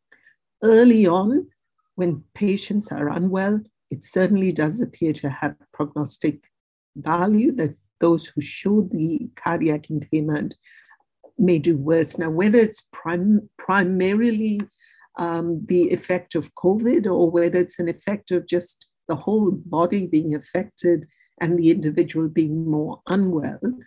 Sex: female